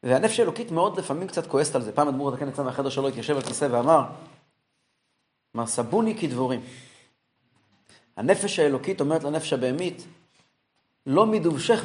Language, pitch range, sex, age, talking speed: Hebrew, 130-180 Hz, male, 30-49, 145 wpm